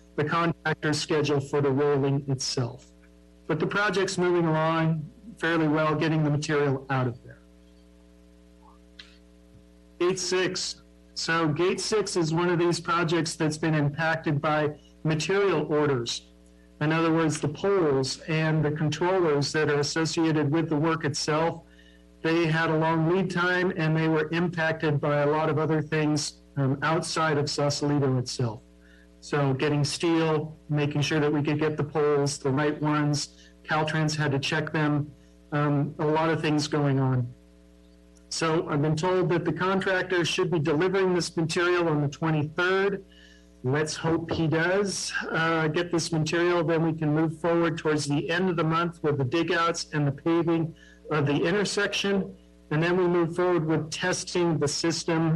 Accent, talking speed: American, 165 wpm